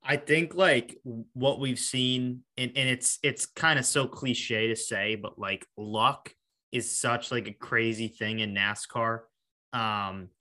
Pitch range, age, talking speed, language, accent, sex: 115-145 Hz, 20-39, 160 wpm, English, American, male